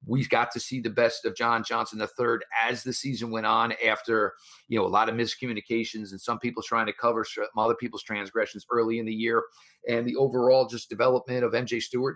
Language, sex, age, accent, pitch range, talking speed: English, male, 40-59, American, 110-130 Hz, 210 wpm